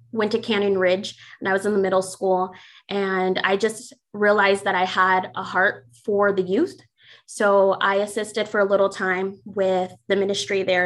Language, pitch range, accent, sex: English, 185-210 Hz, American, female